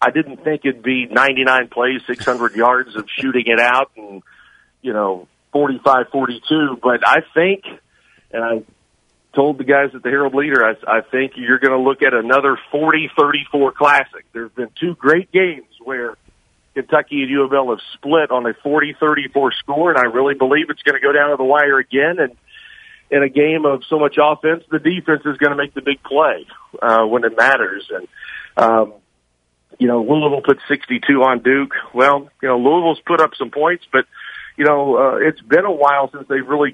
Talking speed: 195 wpm